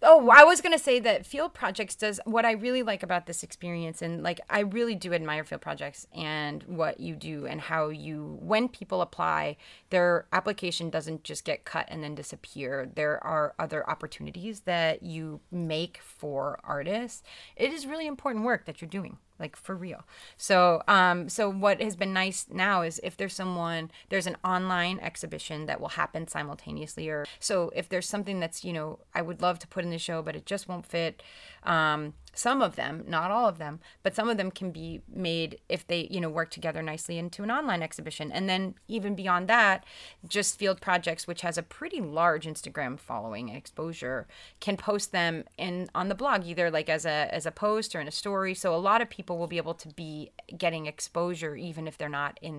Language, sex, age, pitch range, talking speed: English, female, 30-49, 155-200 Hz, 210 wpm